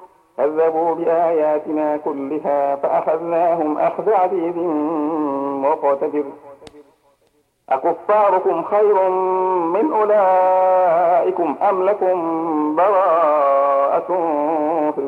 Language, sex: Arabic, male